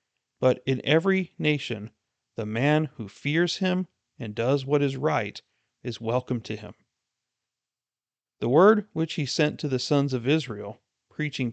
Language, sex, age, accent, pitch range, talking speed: English, male, 40-59, American, 115-150 Hz, 150 wpm